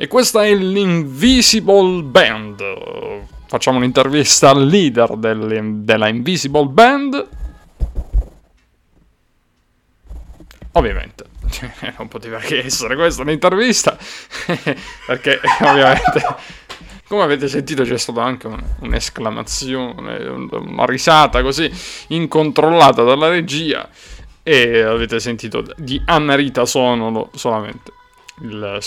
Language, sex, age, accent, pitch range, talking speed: Italian, male, 30-49, native, 110-150 Hz, 90 wpm